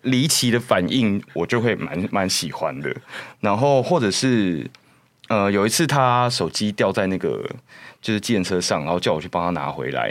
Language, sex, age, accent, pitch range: Chinese, male, 20-39, native, 85-120 Hz